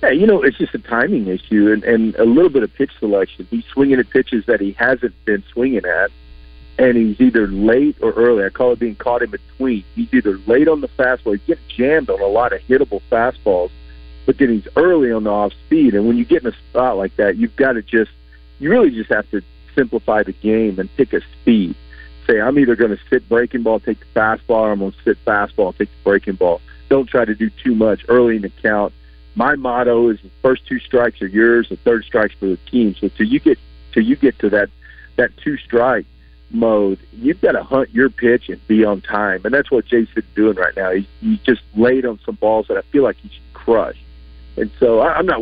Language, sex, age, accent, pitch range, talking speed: English, male, 50-69, American, 95-120 Hz, 240 wpm